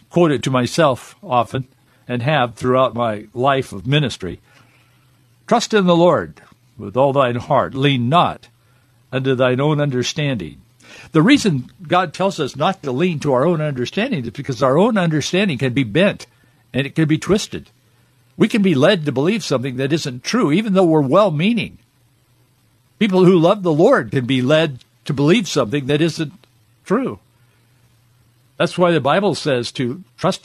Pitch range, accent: 125-165 Hz, American